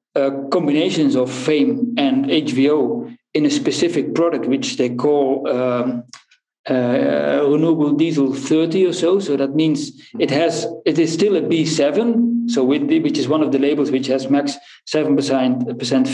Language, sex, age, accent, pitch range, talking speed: English, male, 50-69, Dutch, 140-190 Hz, 155 wpm